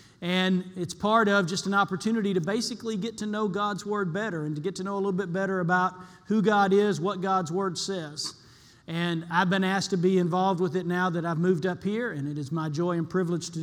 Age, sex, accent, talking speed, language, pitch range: 40-59, male, American, 240 wpm, English, 175-200 Hz